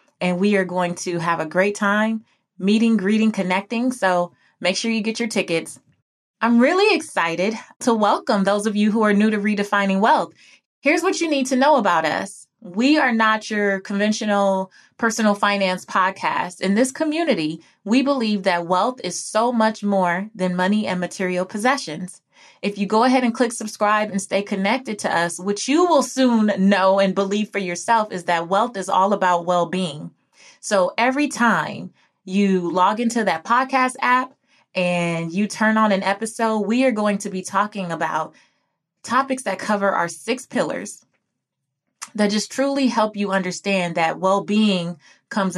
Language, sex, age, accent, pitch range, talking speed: English, female, 20-39, American, 185-230 Hz, 170 wpm